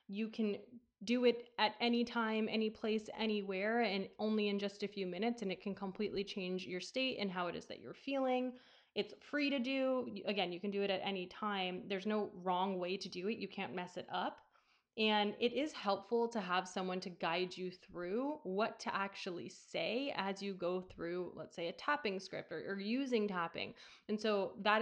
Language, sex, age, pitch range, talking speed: English, female, 20-39, 190-235 Hz, 210 wpm